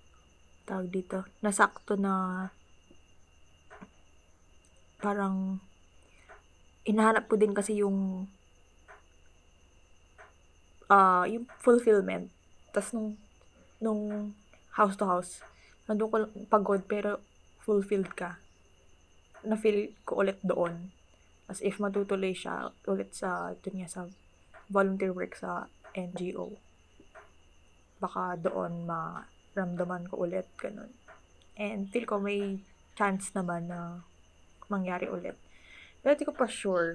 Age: 20-39